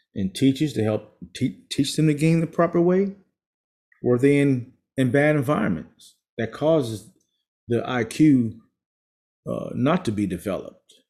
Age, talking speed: 30-49, 150 wpm